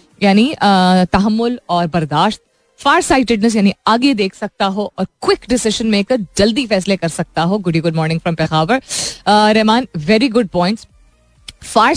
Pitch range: 175-245 Hz